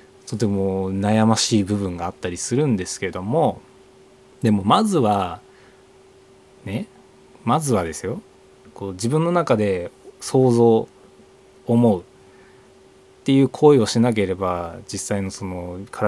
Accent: native